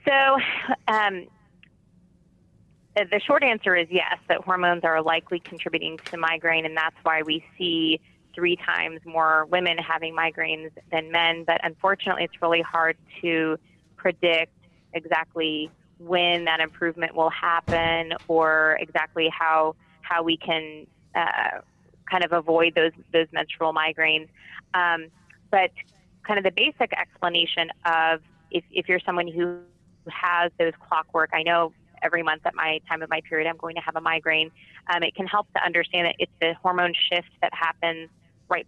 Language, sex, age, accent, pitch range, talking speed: English, female, 20-39, American, 160-175 Hz, 155 wpm